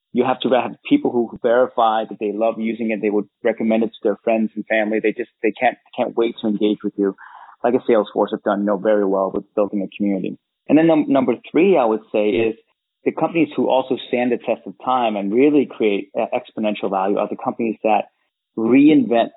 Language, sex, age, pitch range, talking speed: English, male, 30-49, 105-135 Hz, 225 wpm